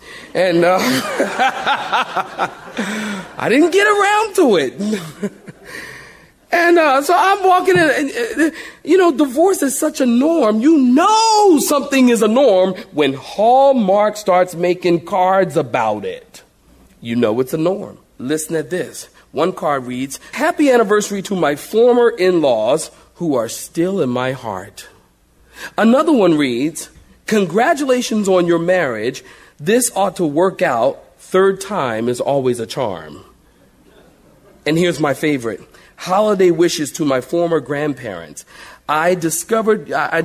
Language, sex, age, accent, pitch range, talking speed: English, male, 40-59, American, 160-250 Hz, 135 wpm